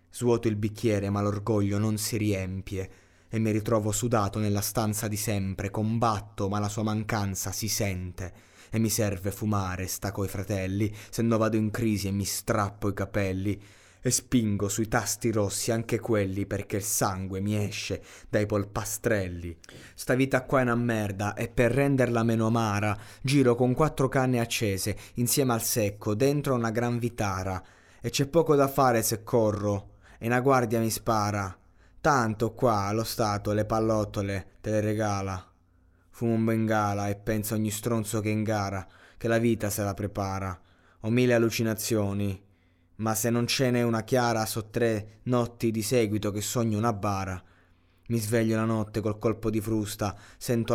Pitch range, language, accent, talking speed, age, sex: 100-115 Hz, Italian, native, 170 wpm, 20-39, male